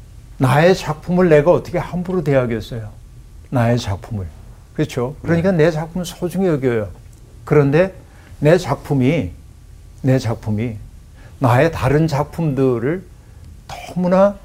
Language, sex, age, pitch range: Korean, male, 60-79, 105-150 Hz